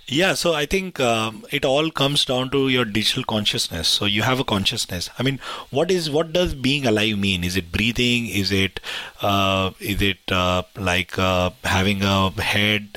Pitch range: 100-120 Hz